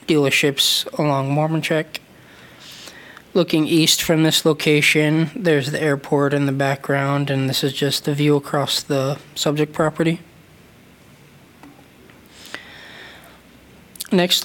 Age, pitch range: 20-39, 140-160 Hz